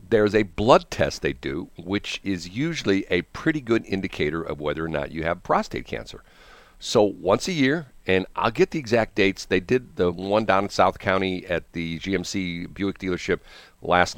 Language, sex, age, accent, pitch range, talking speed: English, male, 50-69, American, 80-100 Hz, 190 wpm